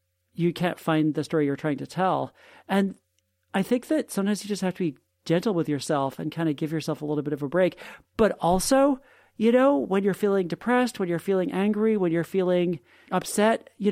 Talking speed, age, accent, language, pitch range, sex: 215 wpm, 40-59, American, English, 150-185 Hz, male